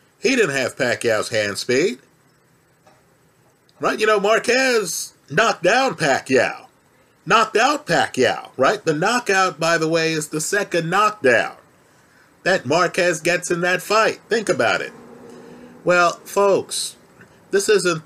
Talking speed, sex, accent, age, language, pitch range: 130 wpm, male, American, 40-59, English, 145-190 Hz